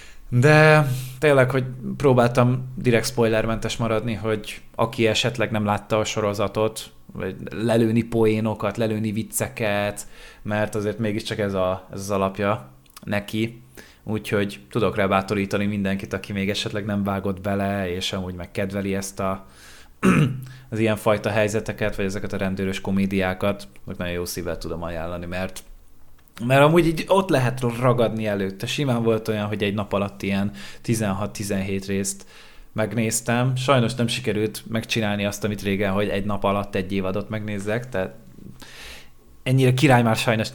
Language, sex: Hungarian, male